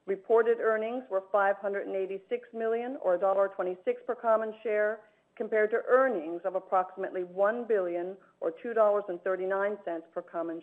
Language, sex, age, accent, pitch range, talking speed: English, female, 50-69, American, 180-225 Hz, 120 wpm